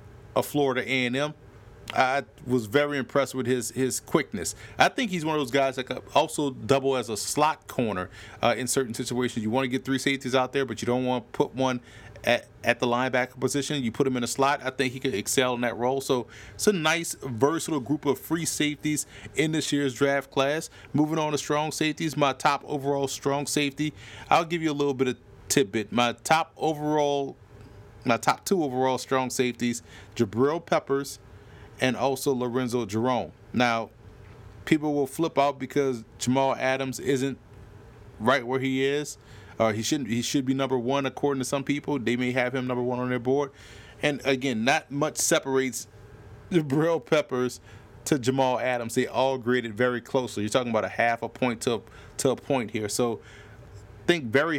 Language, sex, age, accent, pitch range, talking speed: English, male, 30-49, American, 115-140 Hz, 195 wpm